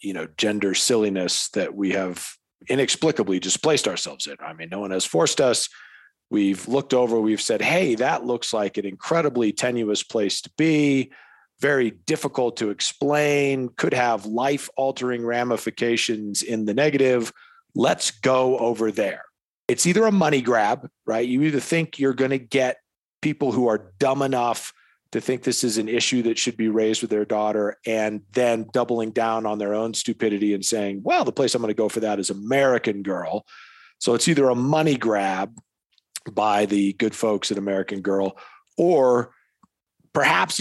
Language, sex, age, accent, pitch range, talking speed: English, male, 40-59, American, 105-130 Hz, 175 wpm